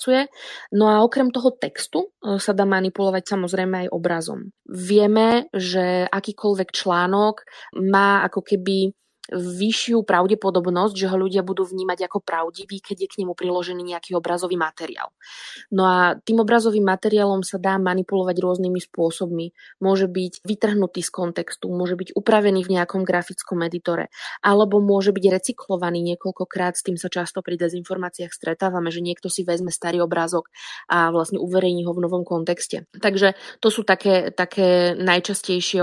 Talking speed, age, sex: 145 wpm, 20-39, female